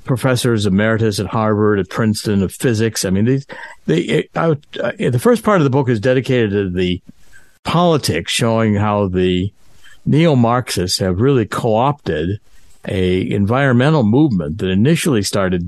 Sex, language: male, English